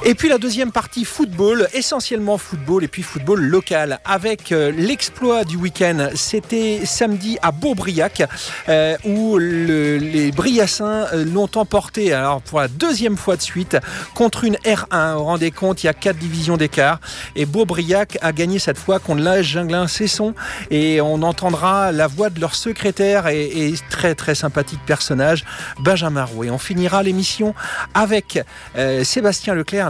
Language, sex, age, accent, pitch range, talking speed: French, male, 40-59, French, 145-195 Hz, 160 wpm